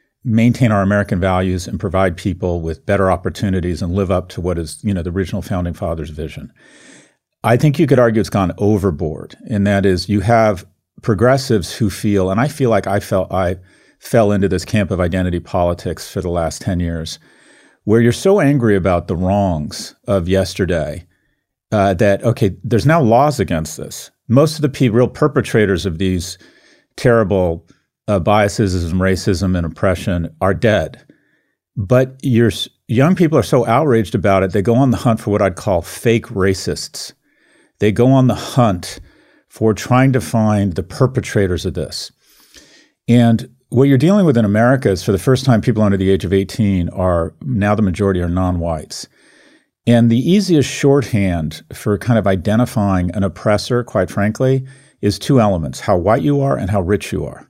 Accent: American